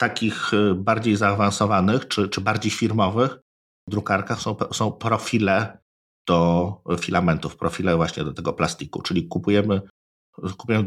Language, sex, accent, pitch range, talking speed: Polish, male, native, 95-110 Hz, 120 wpm